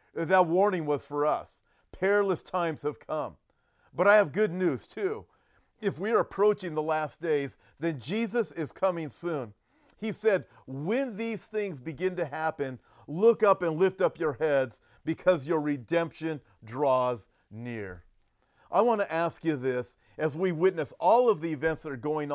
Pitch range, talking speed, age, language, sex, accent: 130-170 Hz, 170 wpm, 40-59, English, male, American